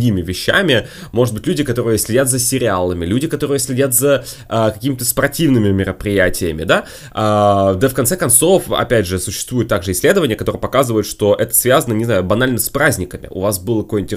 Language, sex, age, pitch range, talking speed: Russian, male, 20-39, 105-130 Hz, 175 wpm